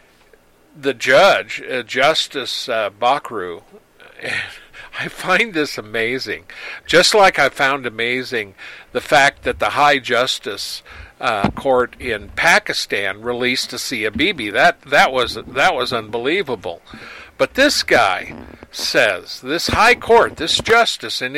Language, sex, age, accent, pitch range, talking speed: English, male, 50-69, American, 135-210 Hz, 125 wpm